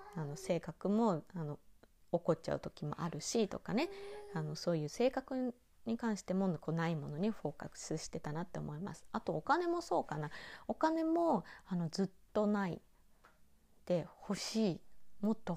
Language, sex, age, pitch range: Japanese, female, 20-39, 160-240 Hz